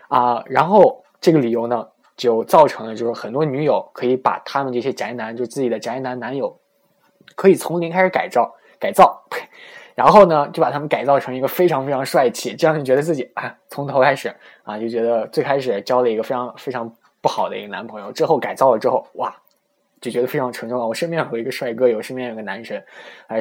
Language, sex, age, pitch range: Chinese, male, 20-39, 115-145 Hz